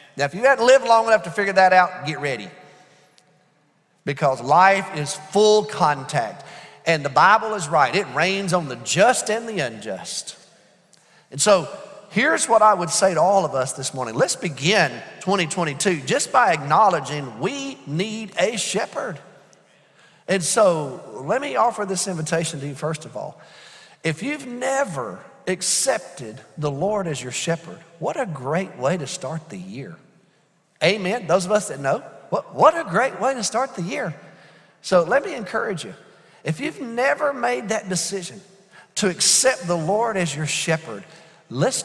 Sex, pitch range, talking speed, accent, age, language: male, 150-200 Hz, 165 wpm, American, 40-59, English